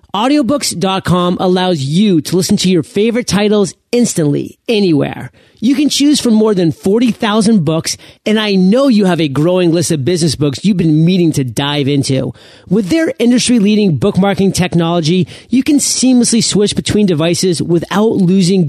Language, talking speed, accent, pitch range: English, 155 wpm, American, 155-220 Hz